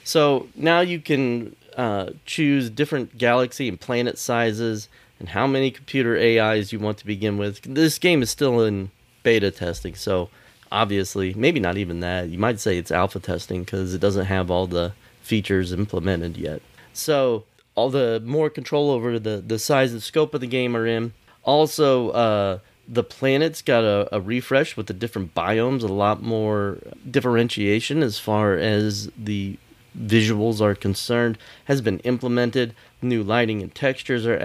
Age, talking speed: 30-49, 165 wpm